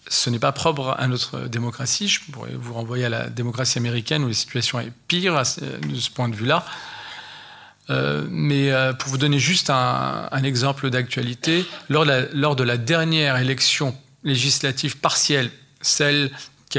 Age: 40-59